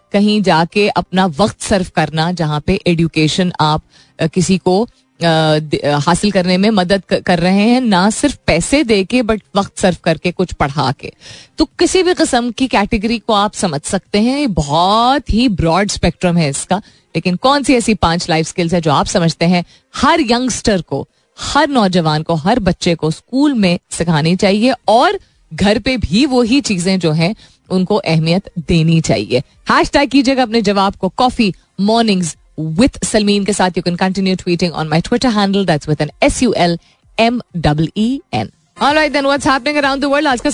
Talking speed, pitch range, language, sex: 150 wpm, 170-235 Hz, Hindi, female